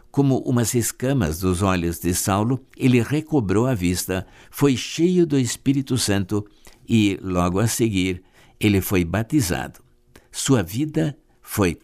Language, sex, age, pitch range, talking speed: Portuguese, male, 60-79, 95-125 Hz, 130 wpm